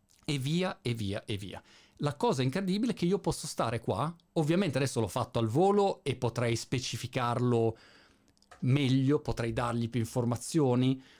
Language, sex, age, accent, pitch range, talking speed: Italian, male, 40-59, native, 120-165 Hz, 155 wpm